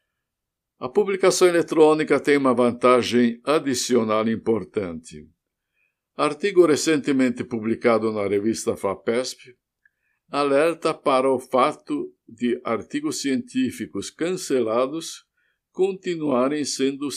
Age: 60-79